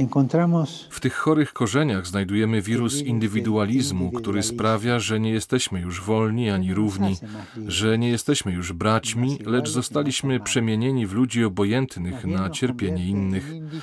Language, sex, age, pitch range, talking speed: Polish, male, 40-59, 105-130 Hz, 130 wpm